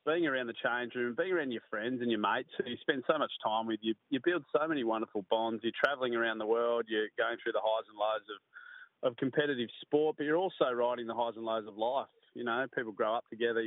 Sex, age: male, 20-39